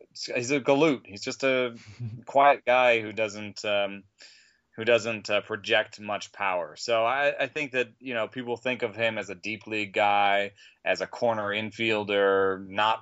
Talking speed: 175 wpm